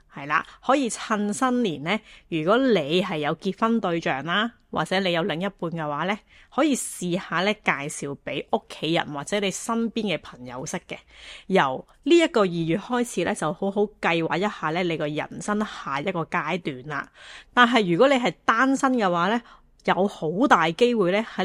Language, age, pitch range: Chinese, 20-39, 160-220 Hz